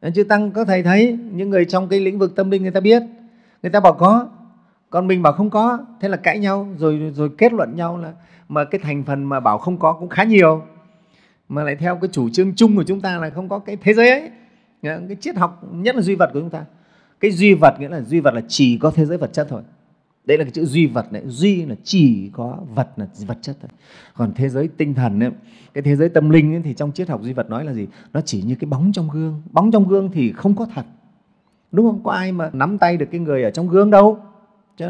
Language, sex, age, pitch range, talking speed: Vietnamese, male, 30-49, 155-200 Hz, 265 wpm